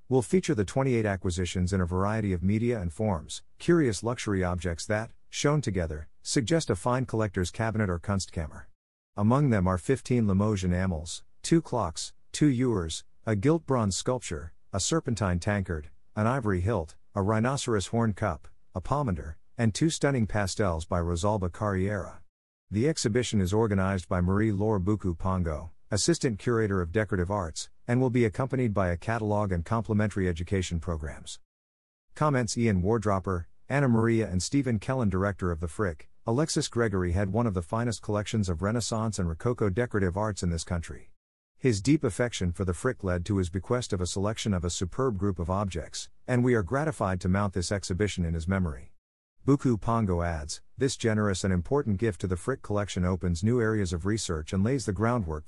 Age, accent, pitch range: 50-69, American, 90-115 Hz